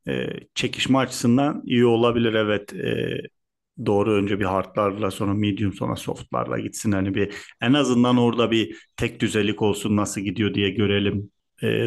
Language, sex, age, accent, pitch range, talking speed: Turkish, male, 40-59, native, 100-130 Hz, 150 wpm